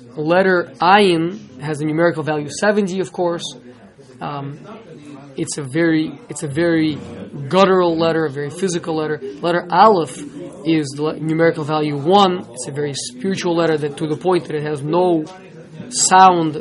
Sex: male